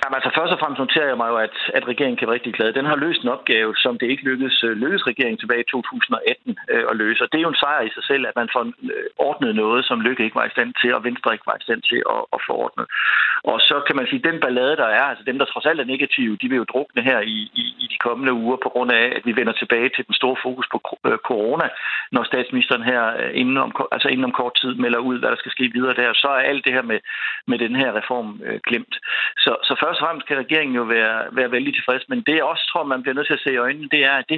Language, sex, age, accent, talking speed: Danish, male, 60-79, native, 285 wpm